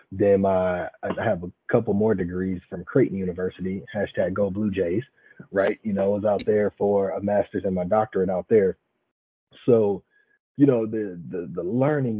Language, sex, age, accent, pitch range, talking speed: English, male, 30-49, American, 95-120 Hz, 180 wpm